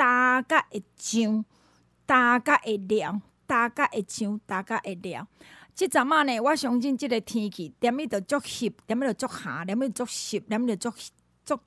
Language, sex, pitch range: Chinese, female, 215-290 Hz